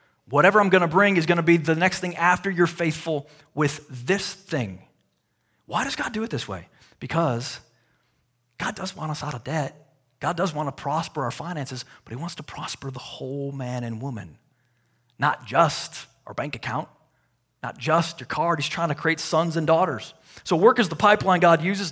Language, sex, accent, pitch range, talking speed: English, male, American, 135-175 Hz, 200 wpm